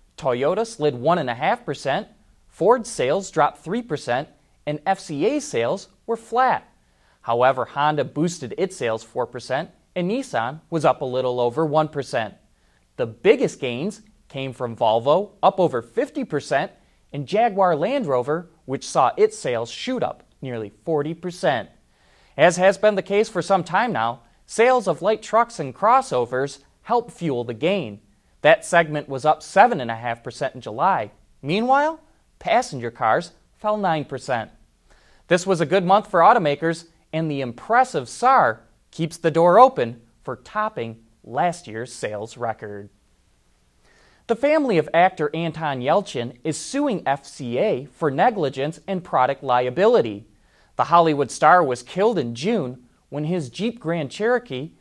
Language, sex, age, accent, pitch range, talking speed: English, male, 20-39, American, 125-195 Hz, 135 wpm